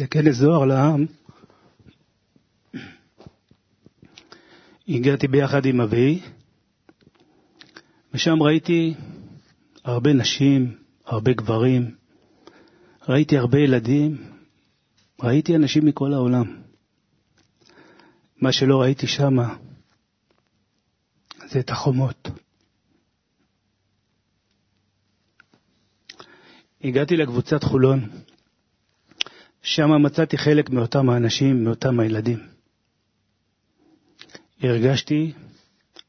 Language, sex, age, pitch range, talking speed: Hebrew, male, 30-49, 115-150 Hz, 65 wpm